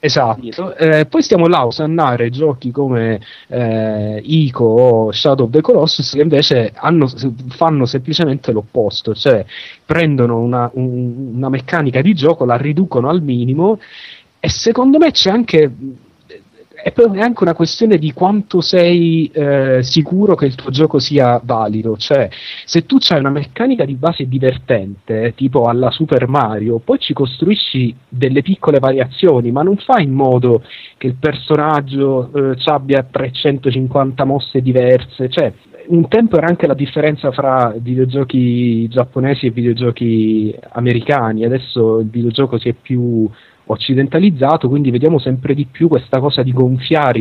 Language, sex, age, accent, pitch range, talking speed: Italian, male, 30-49, native, 120-155 Hz, 150 wpm